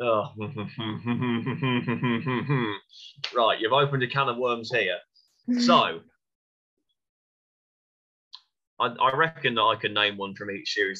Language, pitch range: English, 105-150 Hz